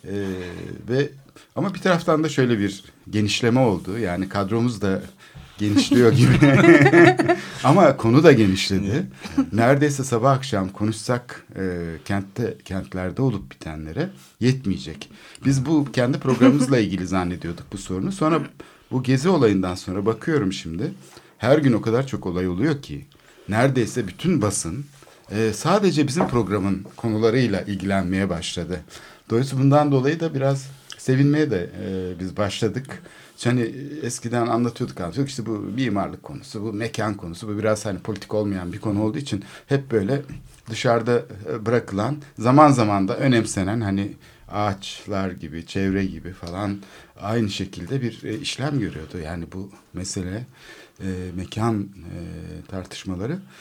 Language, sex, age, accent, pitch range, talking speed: Turkish, male, 60-79, native, 95-135 Hz, 135 wpm